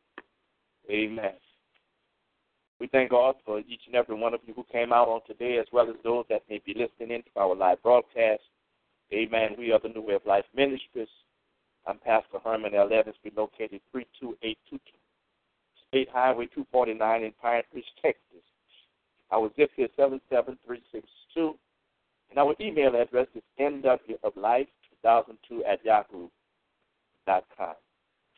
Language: English